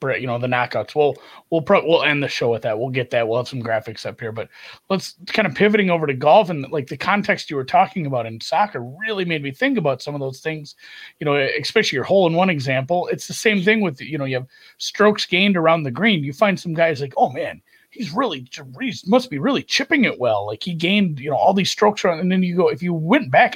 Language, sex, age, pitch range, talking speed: English, male, 30-49, 140-200 Hz, 260 wpm